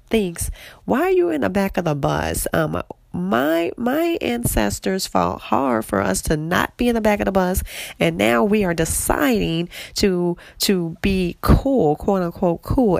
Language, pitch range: English, 135-185 Hz